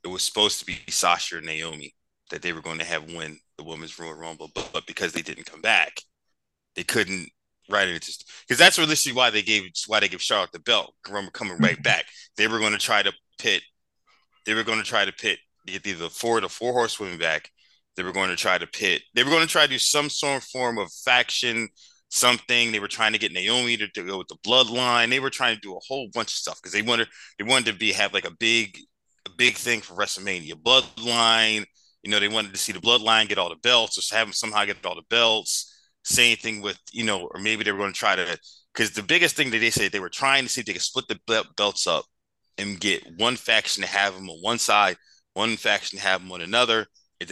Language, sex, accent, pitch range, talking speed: English, male, American, 95-125 Hz, 255 wpm